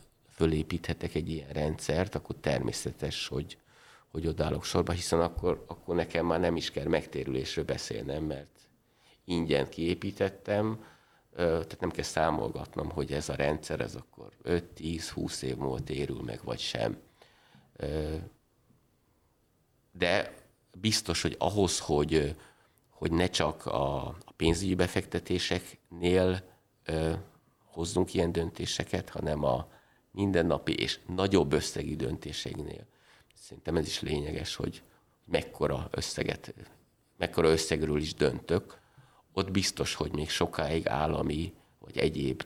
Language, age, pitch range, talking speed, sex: Hungarian, 50-69, 80-95 Hz, 110 wpm, male